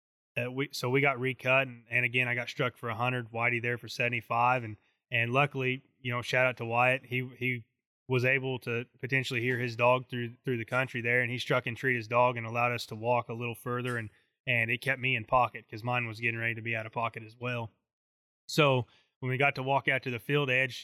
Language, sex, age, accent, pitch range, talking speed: English, male, 20-39, American, 120-130 Hz, 250 wpm